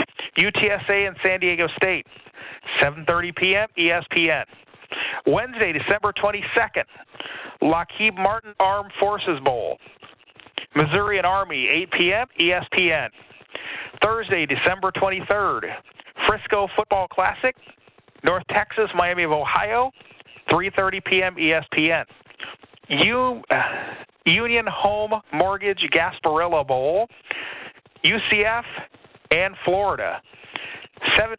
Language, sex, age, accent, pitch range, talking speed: English, male, 50-69, American, 180-215 Hz, 90 wpm